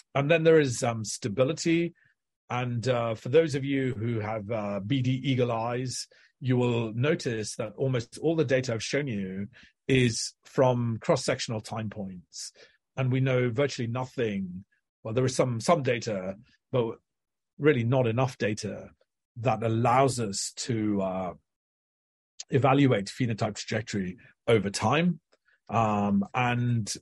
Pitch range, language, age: 110-135 Hz, English, 40-59